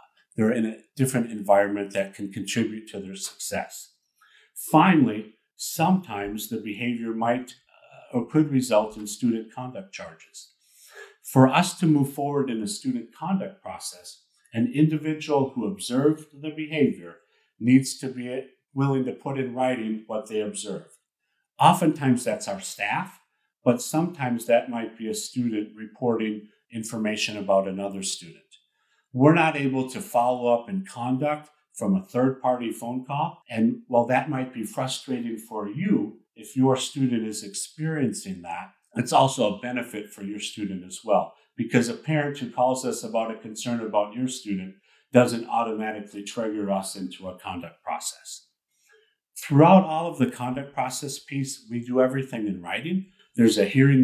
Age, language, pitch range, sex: 50-69, English, 110-140 Hz, male